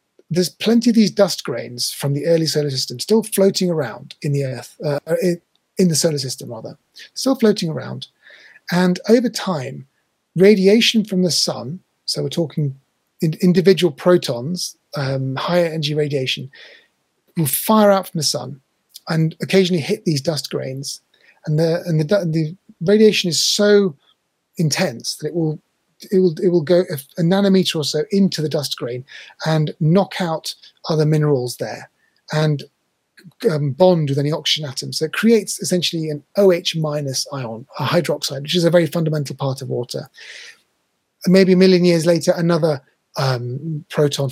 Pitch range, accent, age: 145-180 Hz, British, 30-49